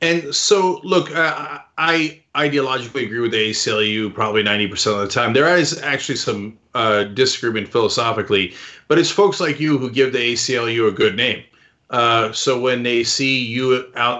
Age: 30-49